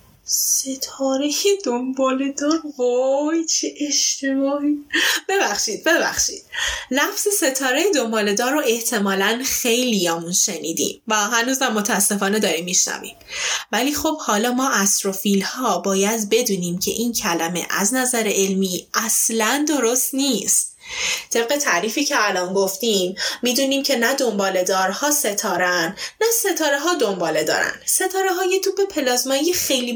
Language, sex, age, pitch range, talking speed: Persian, female, 10-29, 215-315 Hz, 110 wpm